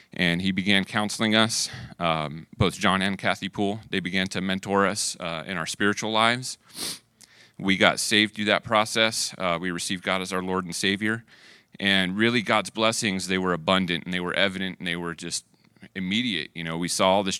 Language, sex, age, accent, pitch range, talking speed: English, male, 30-49, American, 90-105 Hz, 200 wpm